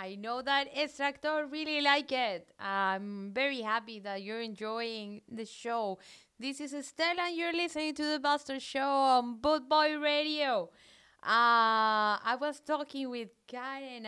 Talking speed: 150 wpm